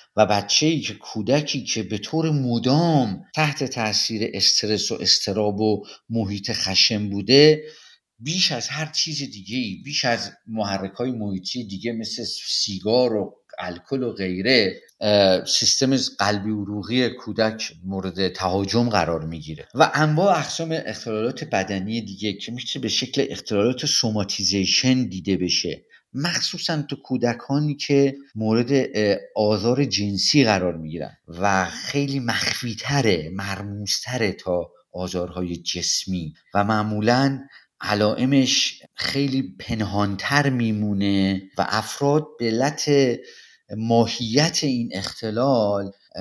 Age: 50-69